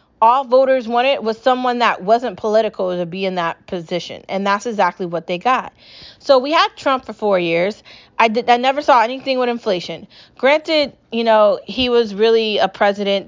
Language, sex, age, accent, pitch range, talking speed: English, female, 30-49, American, 195-255 Hz, 185 wpm